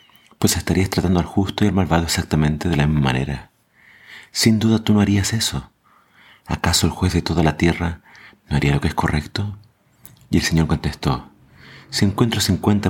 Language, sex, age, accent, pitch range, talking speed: Spanish, male, 40-59, Argentinian, 80-100 Hz, 180 wpm